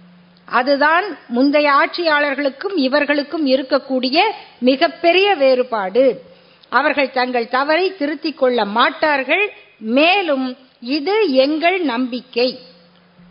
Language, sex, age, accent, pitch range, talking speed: Tamil, female, 50-69, native, 255-345 Hz, 75 wpm